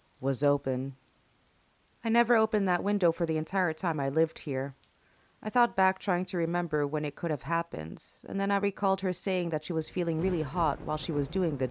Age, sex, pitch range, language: 40-59, female, 145-190 Hz, English